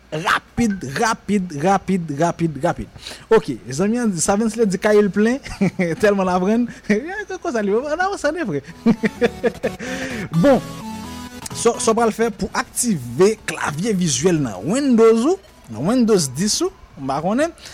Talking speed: 145 wpm